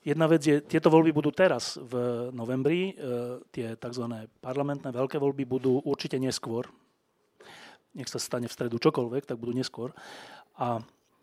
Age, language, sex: 30-49, Slovak, male